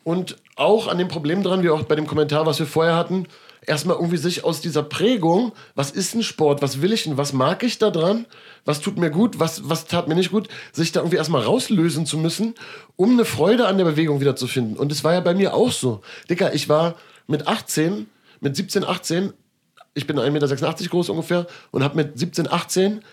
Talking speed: 220 wpm